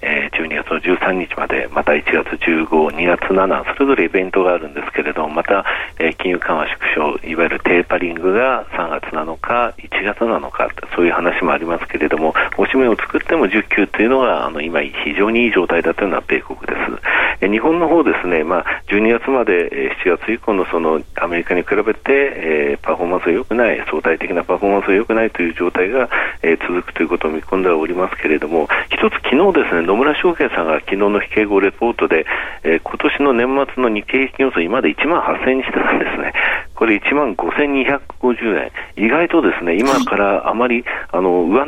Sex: male